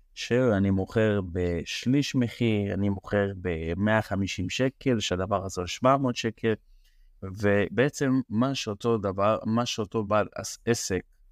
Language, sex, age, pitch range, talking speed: Hebrew, male, 20-39, 95-120 Hz, 110 wpm